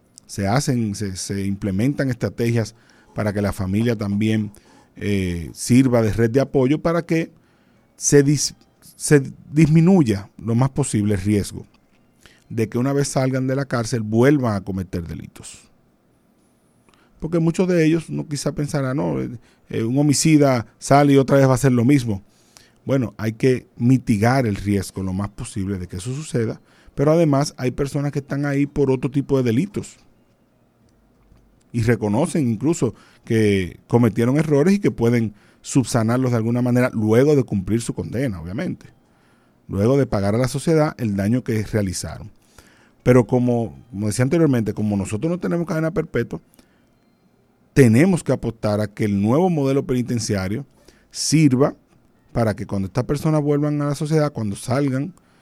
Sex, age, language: male, 40-59, Spanish